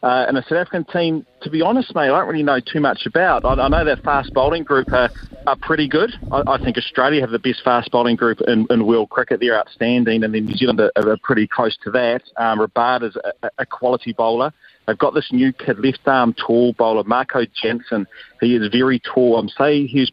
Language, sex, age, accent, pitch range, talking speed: English, male, 40-59, Australian, 115-135 Hz, 235 wpm